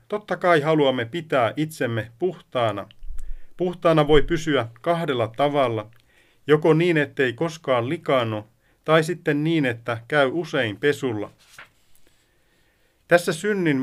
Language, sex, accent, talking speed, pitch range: Finnish, male, native, 110 wpm, 115-160 Hz